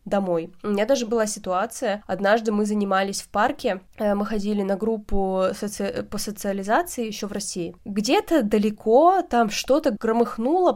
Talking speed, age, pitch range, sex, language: 145 wpm, 20-39, 195-230 Hz, female, Russian